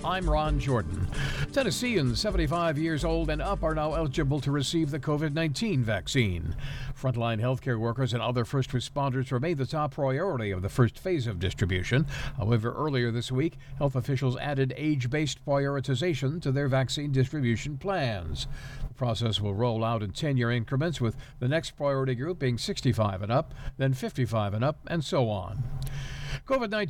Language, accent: English, American